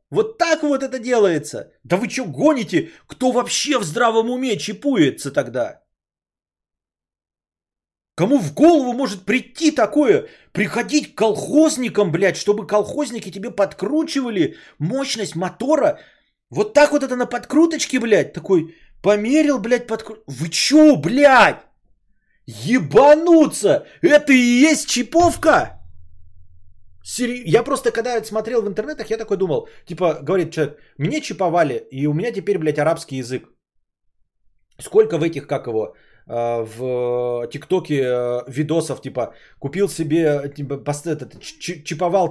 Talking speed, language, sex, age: 125 wpm, Bulgarian, male, 30-49